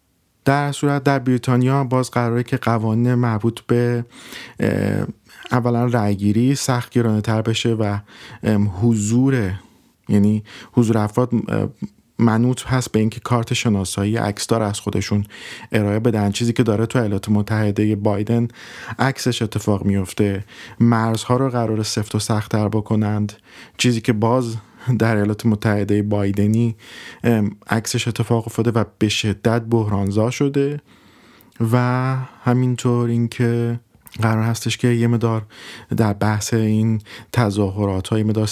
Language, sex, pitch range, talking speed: Persian, male, 105-120 Hz, 115 wpm